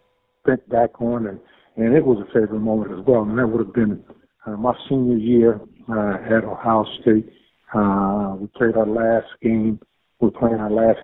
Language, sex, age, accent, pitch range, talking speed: English, male, 50-69, American, 105-120 Hz, 185 wpm